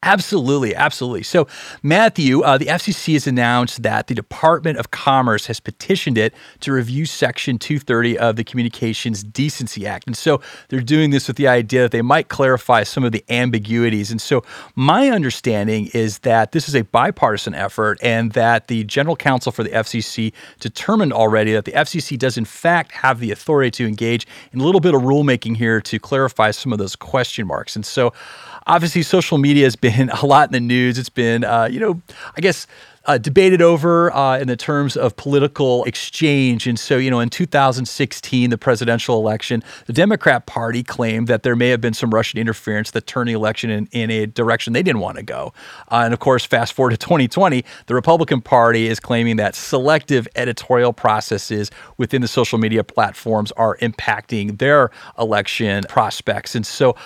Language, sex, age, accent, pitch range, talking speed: English, male, 30-49, American, 115-140 Hz, 190 wpm